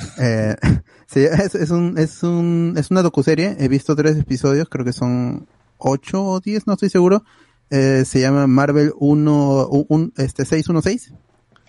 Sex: male